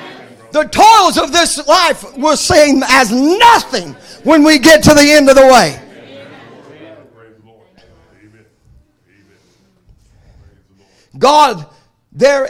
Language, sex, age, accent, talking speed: English, male, 50-69, American, 95 wpm